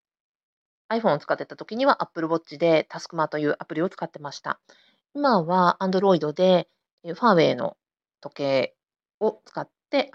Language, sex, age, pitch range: Japanese, female, 40-59, 180-265 Hz